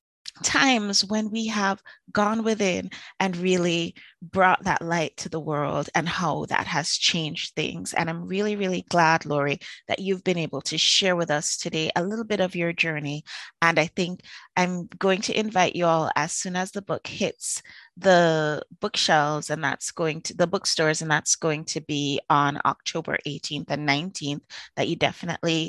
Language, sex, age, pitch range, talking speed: English, female, 30-49, 145-185 Hz, 180 wpm